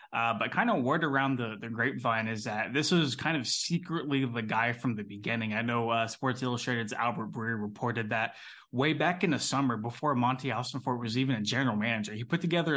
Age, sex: 20-39, male